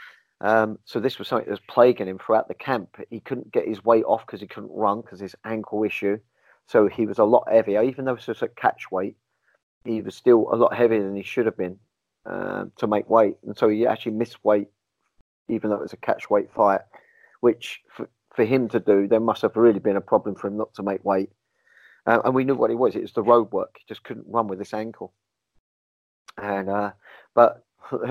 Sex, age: male, 30-49